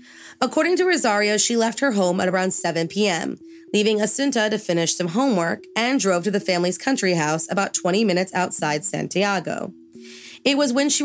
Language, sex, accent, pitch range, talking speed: English, female, American, 180-240 Hz, 180 wpm